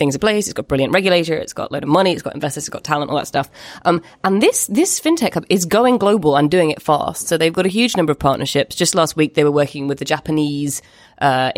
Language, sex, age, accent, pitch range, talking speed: English, female, 20-39, British, 140-180 Hz, 275 wpm